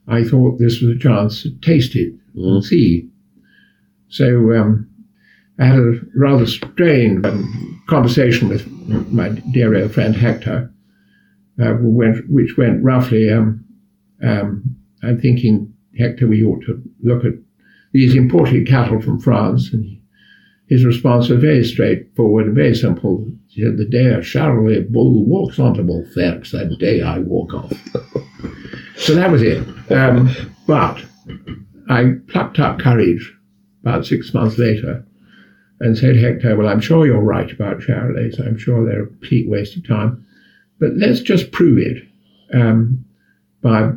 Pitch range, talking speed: 110-130 Hz, 145 wpm